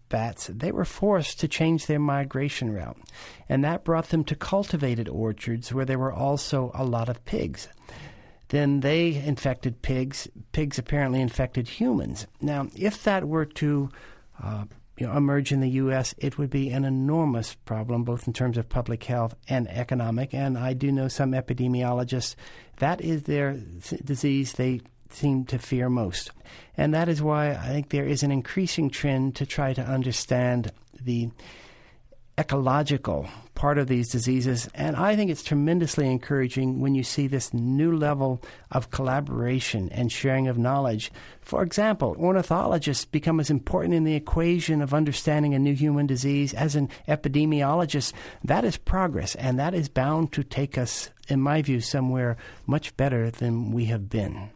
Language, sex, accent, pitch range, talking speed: English, male, American, 125-150 Hz, 165 wpm